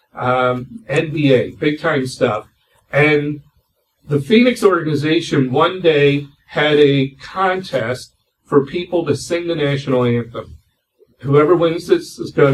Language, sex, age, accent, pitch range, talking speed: English, male, 50-69, American, 125-160 Hz, 125 wpm